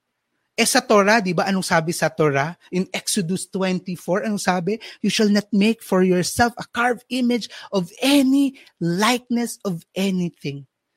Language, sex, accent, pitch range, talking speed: Filipino, male, native, 185-275 Hz, 155 wpm